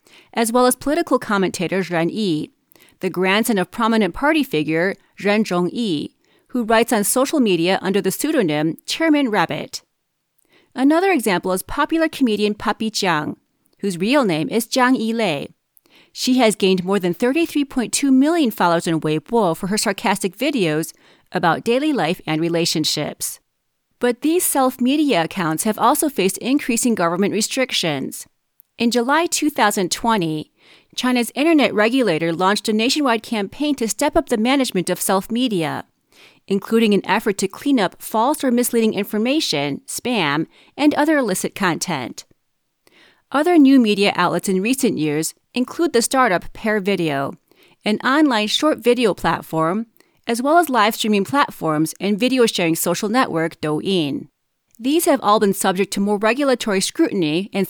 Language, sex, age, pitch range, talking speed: English, female, 30-49, 185-260 Hz, 140 wpm